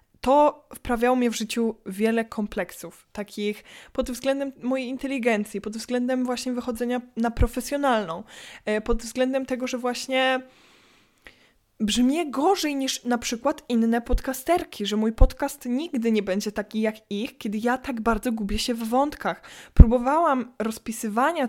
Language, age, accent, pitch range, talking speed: Polish, 20-39, native, 215-260 Hz, 135 wpm